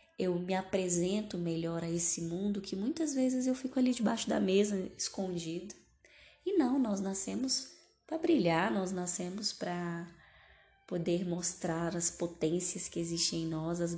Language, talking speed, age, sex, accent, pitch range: Portuguese, 150 wpm, 10-29, female, Brazilian, 175-205 Hz